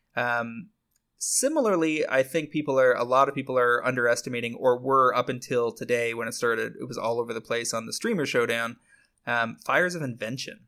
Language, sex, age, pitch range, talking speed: English, male, 20-39, 120-140 Hz, 190 wpm